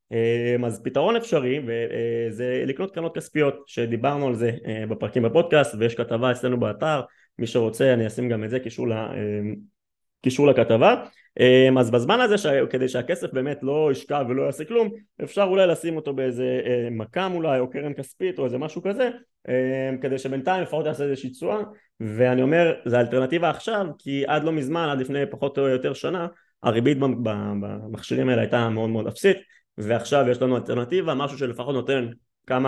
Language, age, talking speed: Hebrew, 20-39, 160 wpm